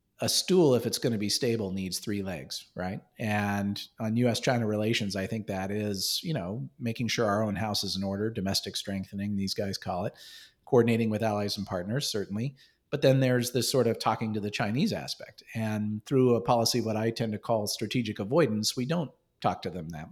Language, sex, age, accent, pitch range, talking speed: English, male, 40-59, American, 105-145 Hz, 205 wpm